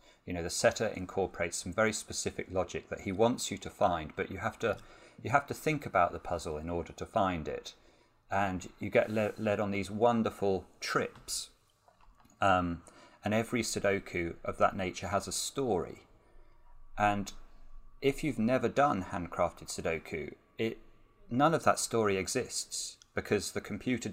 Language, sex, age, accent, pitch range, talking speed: English, male, 40-59, British, 90-110 Hz, 165 wpm